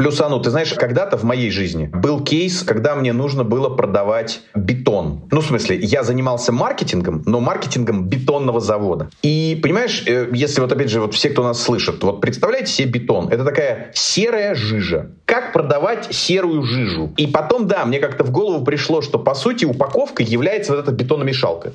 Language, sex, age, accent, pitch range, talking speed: Russian, male, 30-49, native, 125-170 Hz, 175 wpm